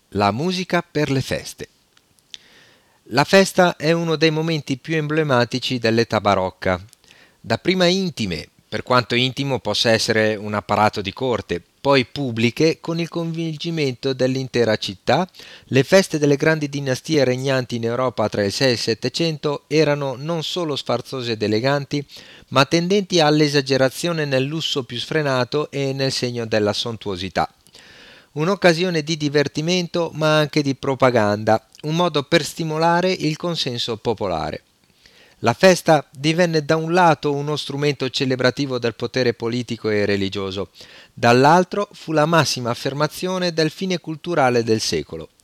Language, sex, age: Italian, male, 40-59